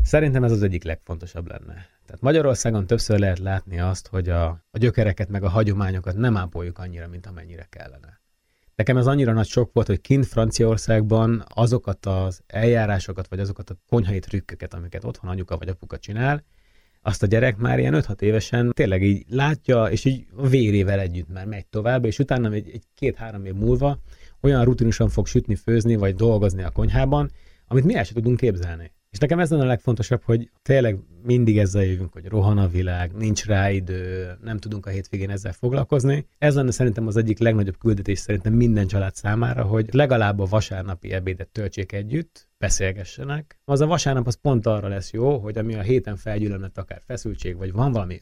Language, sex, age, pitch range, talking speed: Hungarian, male, 30-49, 95-120 Hz, 180 wpm